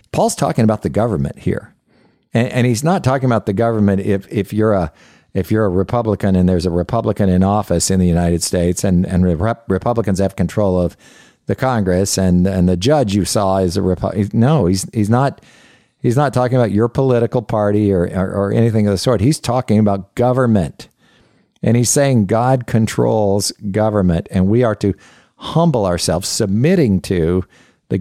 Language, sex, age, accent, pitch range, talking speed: English, male, 50-69, American, 95-115 Hz, 185 wpm